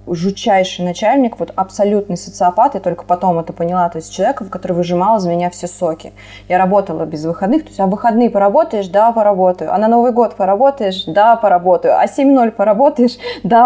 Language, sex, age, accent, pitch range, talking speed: Russian, female, 20-39, native, 180-235 Hz, 180 wpm